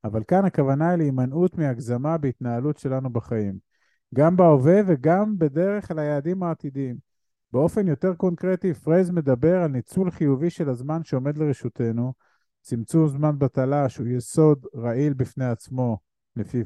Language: Hebrew